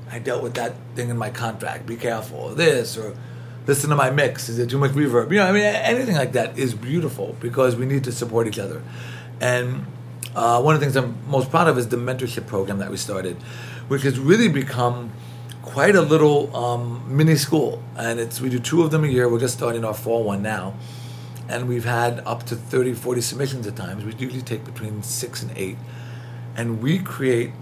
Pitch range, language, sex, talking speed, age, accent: 115-130 Hz, English, male, 220 wpm, 40-59, American